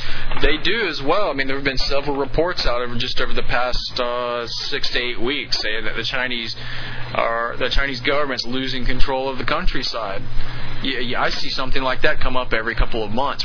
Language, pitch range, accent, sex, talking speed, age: English, 120-140 Hz, American, male, 215 wpm, 20-39